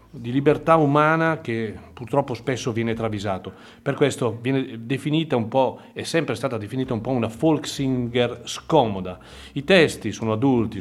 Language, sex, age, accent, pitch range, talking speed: Italian, male, 40-59, native, 110-140 Hz, 155 wpm